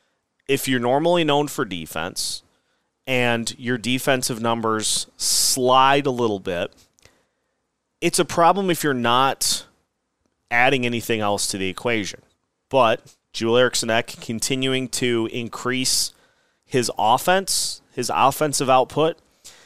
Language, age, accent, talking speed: English, 30-49, American, 115 wpm